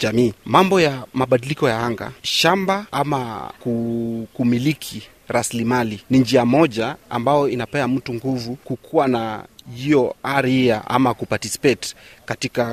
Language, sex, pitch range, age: Swahili, male, 110-130 Hz, 30-49